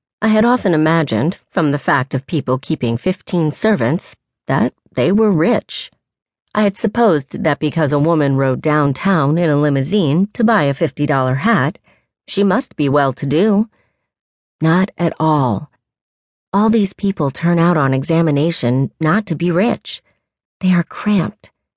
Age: 40-59